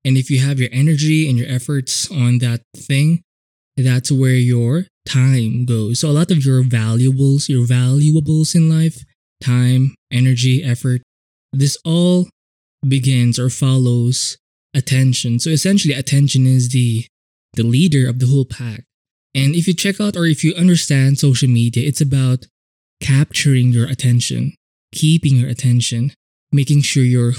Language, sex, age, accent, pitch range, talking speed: English, male, 20-39, Filipino, 120-145 Hz, 150 wpm